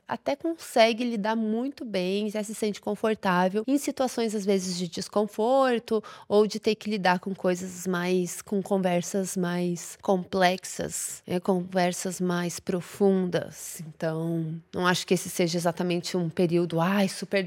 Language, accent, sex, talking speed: Portuguese, Brazilian, female, 150 wpm